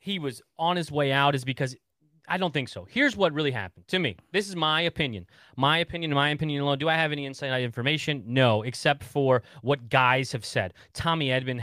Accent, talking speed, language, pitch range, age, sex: American, 215 wpm, English, 120-160 Hz, 30-49, male